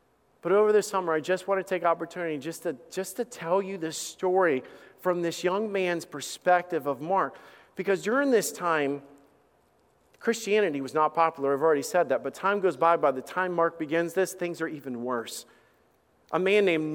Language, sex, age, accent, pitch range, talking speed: English, male, 40-59, American, 160-195 Hz, 190 wpm